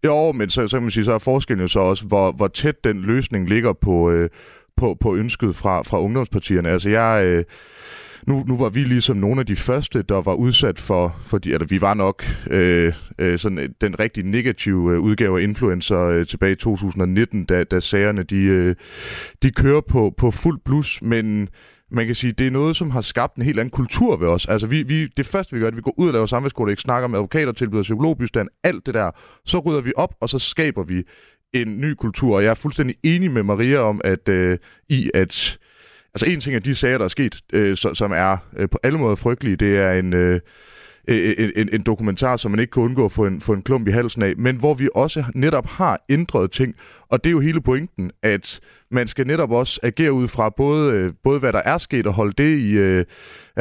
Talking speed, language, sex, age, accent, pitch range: 220 wpm, Danish, male, 30-49, native, 100-135 Hz